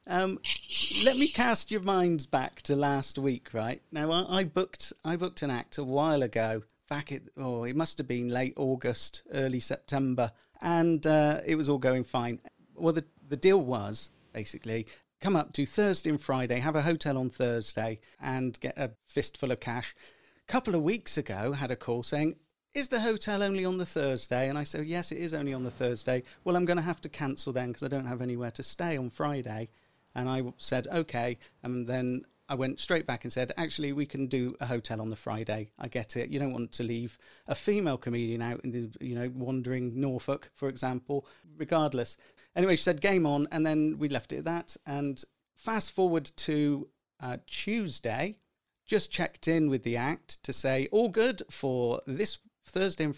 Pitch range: 125-165 Hz